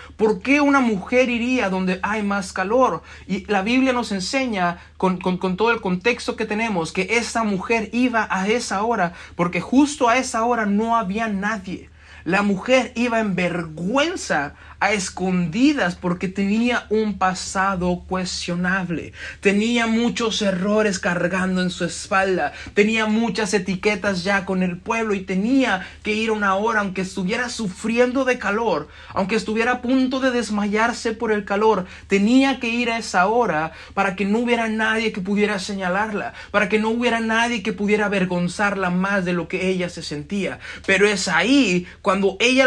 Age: 30-49